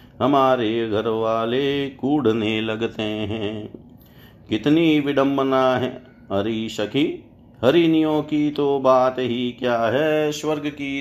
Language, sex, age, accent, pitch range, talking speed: Hindi, male, 50-69, native, 115-140 Hz, 110 wpm